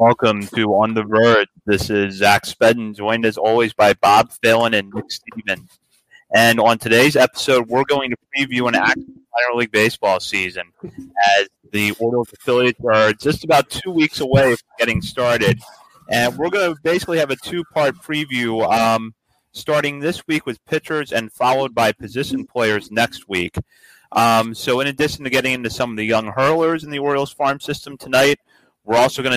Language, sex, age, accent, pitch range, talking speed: English, male, 30-49, American, 105-135 Hz, 180 wpm